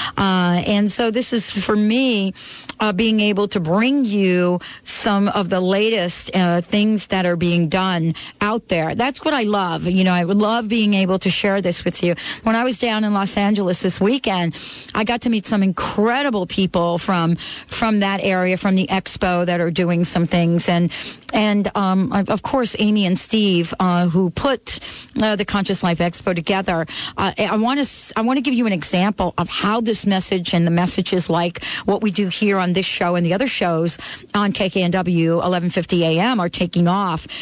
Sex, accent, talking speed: female, American, 200 wpm